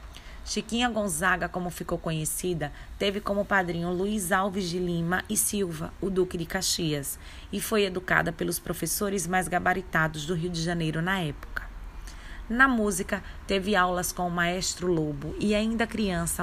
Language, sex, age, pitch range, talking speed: Portuguese, female, 20-39, 165-195 Hz, 155 wpm